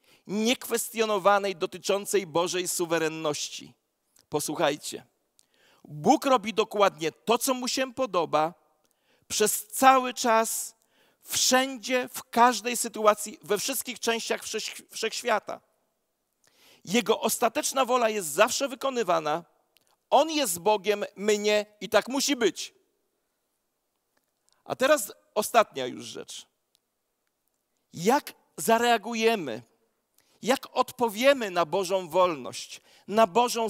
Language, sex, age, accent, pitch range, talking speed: Polish, male, 40-59, native, 200-255 Hz, 95 wpm